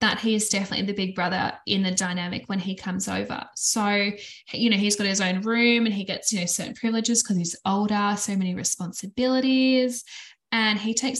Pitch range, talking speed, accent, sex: 195-240 Hz, 205 wpm, Australian, female